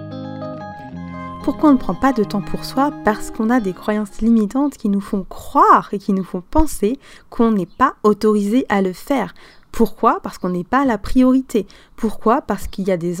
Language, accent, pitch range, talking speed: French, French, 185-255 Hz, 200 wpm